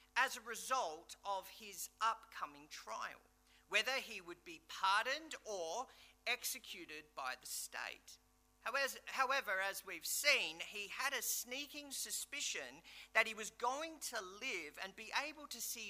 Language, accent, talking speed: English, Australian, 140 wpm